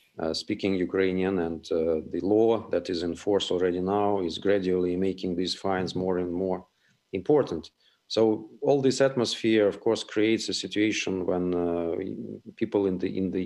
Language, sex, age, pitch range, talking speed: English, male, 40-59, 90-105 Hz, 170 wpm